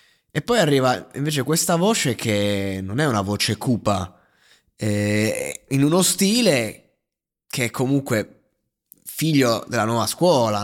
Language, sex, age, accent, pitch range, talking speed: Italian, male, 20-39, native, 110-140 Hz, 130 wpm